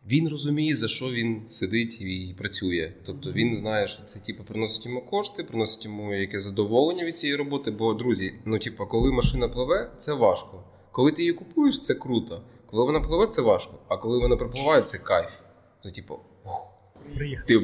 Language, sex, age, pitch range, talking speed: Ukrainian, male, 20-39, 95-110 Hz, 185 wpm